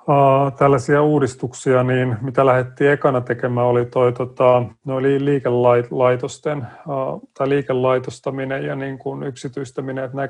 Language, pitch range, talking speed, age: Finnish, 125-140 Hz, 115 wpm, 30-49